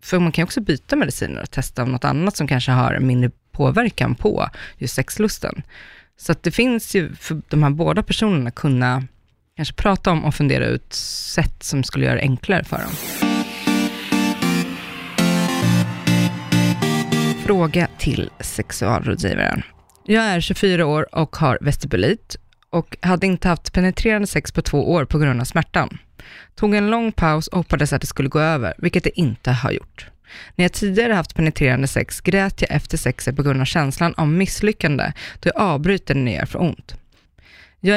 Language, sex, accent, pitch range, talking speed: Swedish, female, native, 130-180 Hz, 170 wpm